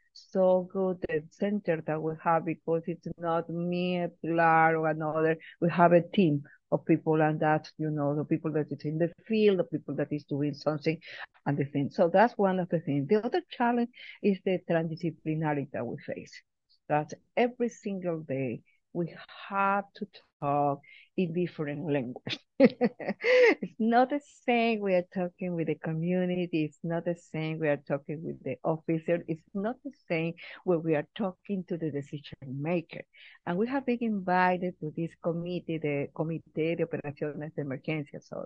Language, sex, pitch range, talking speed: English, female, 155-185 Hz, 180 wpm